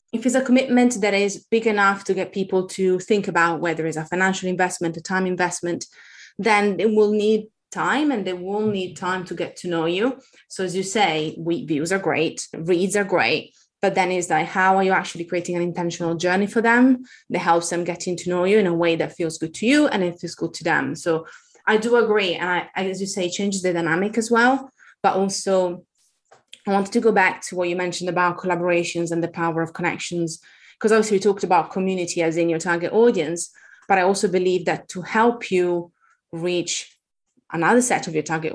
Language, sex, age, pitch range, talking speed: English, female, 20-39, 170-200 Hz, 215 wpm